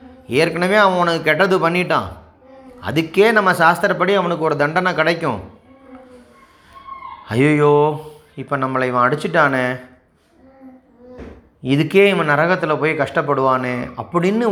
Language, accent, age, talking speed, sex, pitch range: Tamil, native, 30-49, 95 wpm, male, 145-200 Hz